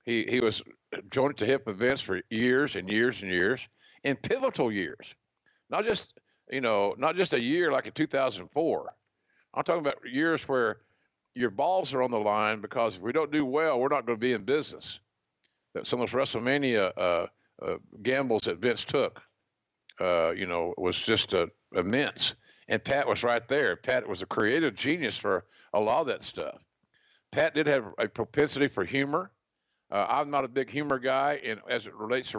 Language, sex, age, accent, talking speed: English, male, 50-69, American, 190 wpm